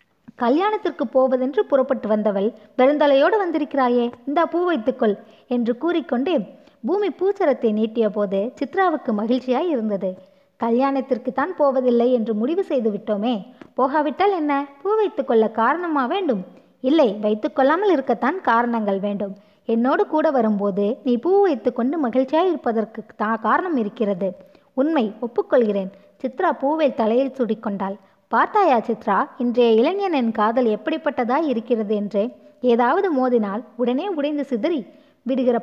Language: Tamil